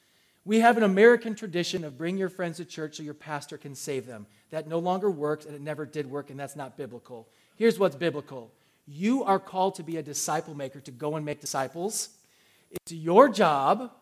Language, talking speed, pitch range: English, 210 wpm, 150-200 Hz